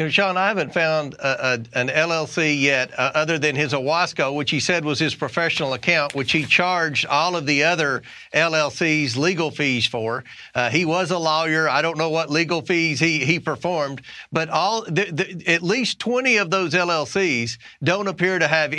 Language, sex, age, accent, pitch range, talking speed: English, male, 40-59, American, 155-190 Hz, 190 wpm